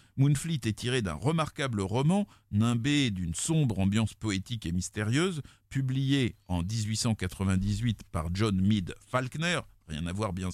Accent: French